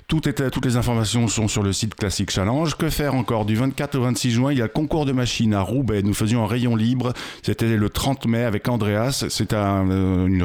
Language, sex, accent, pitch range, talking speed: French, male, French, 105-125 Hz, 245 wpm